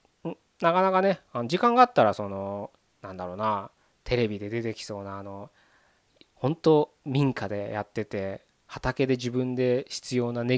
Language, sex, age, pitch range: Japanese, male, 20-39, 110-155 Hz